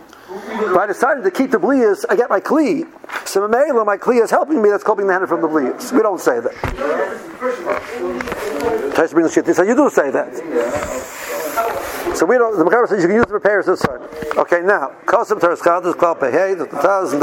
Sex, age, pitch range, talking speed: male, 60-79, 175-250 Hz, 190 wpm